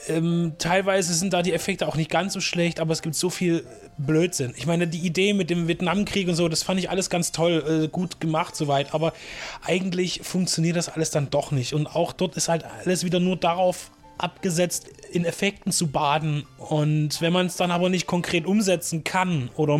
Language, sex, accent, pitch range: German, male, German, 145-170 Hz